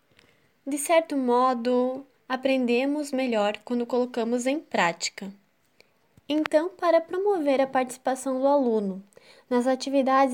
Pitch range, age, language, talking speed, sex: 240-290 Hz, 10-29, Portuguese, 105 wpm, female